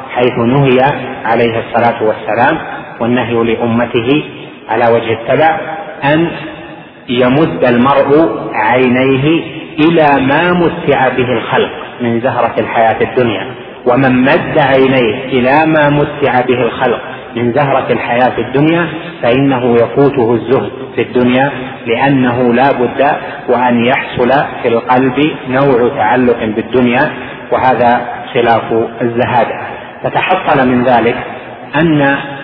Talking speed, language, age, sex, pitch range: 100 wpm, Arabic, 30-49, male, 125-145 Hz